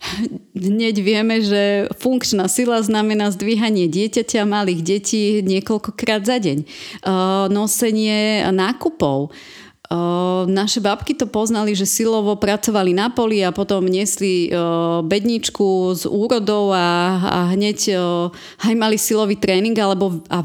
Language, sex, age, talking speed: Slovak, female, 30-49, 125 wpm